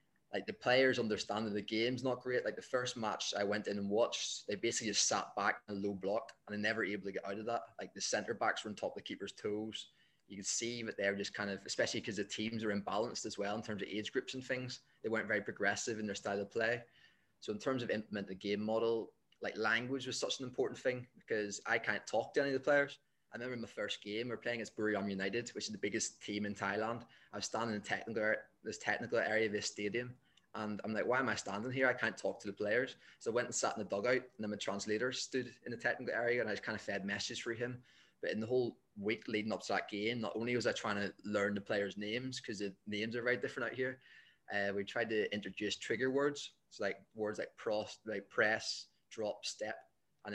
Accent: British